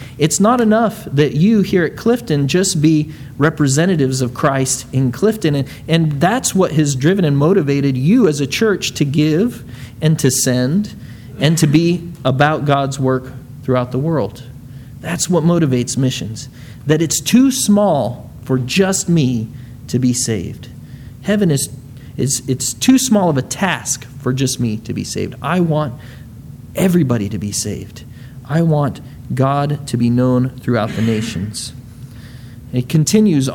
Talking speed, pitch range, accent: 155 wpm, 125-155 Hz, American